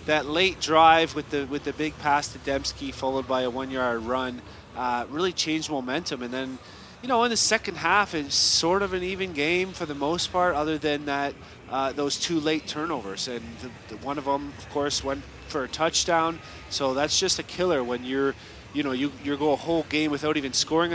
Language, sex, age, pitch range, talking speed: English, male, 30-49, 115-150 Hz, 220 wpm